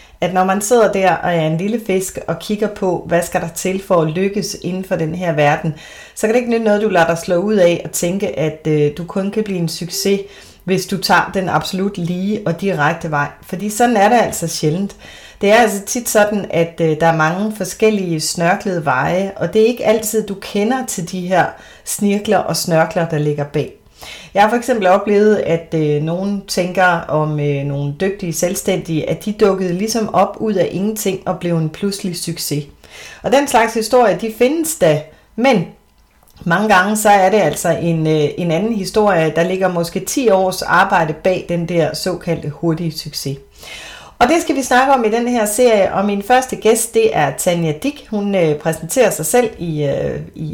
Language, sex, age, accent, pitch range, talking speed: Danish, female, 30-49, native, 165-215 Hz, 205 wpm